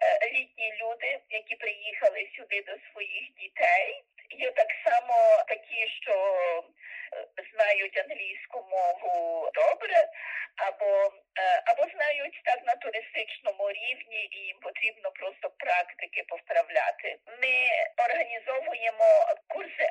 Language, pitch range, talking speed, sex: Ukrainian, 220-330 Hz, 100 wpm, female